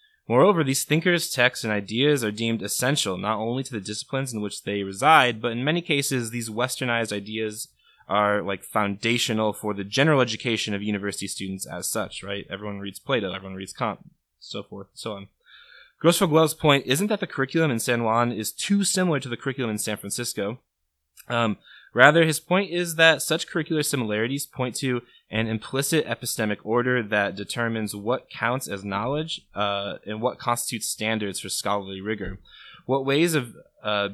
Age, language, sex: 20-39, English, male